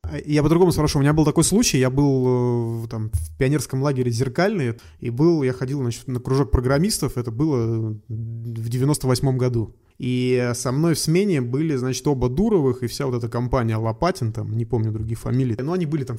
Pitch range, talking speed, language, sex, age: 120-145 Hz, 195 wpm, Russian, male, 20-39